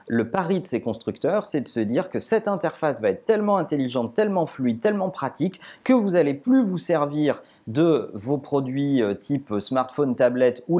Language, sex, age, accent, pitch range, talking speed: French, male, 30-49, French, 125-185 Hz, 185 wpm